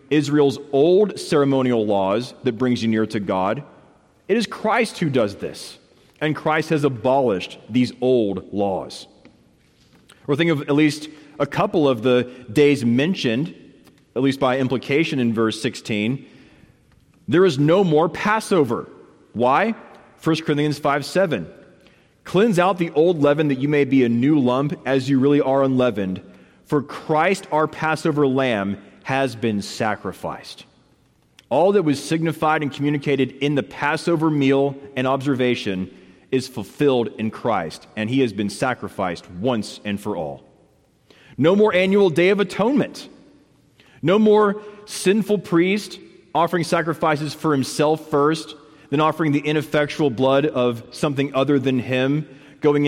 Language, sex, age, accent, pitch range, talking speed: English, male, 30-49, American, 130-155 Hz, 145 wpm